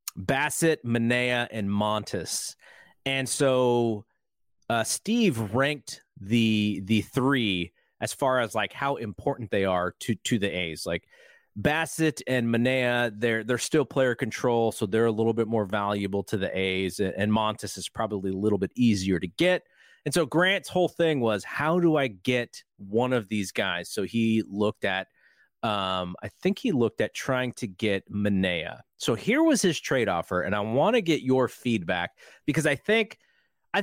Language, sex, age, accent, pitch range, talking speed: English, male, 30-49, American, 105-135 Hz, 175 wpm